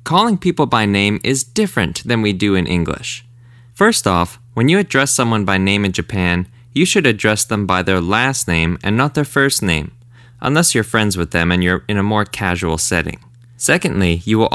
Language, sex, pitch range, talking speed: English, male, 95-130 Hz, 200 wpm